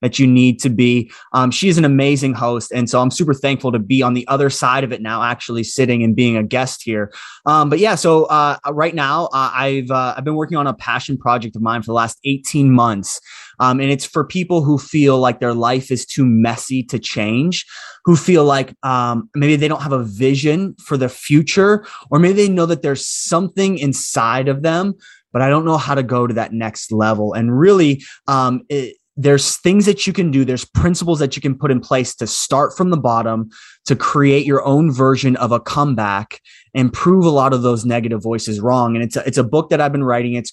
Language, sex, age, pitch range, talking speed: English, male, 20-39, 125-145 Hz, 230 wpm